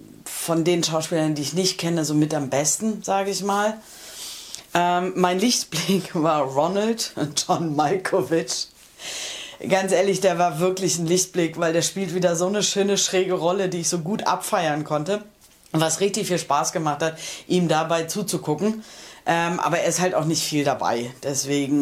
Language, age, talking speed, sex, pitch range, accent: German, 30-49, 170 wpm, female, 150-185 Hz, German